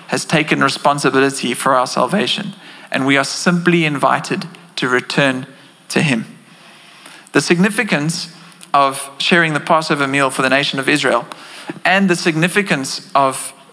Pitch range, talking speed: 140-175 Hz, 135 wpm